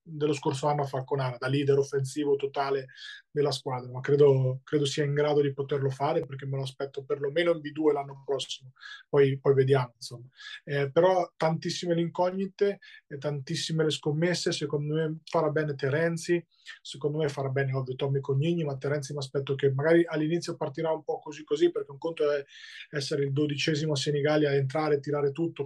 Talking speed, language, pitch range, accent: 185 wpm, Italian, 140-160 Hz, native